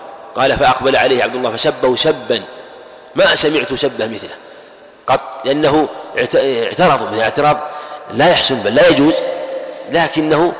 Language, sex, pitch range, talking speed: Arabic, male, 130-160 Hz, 120 wpm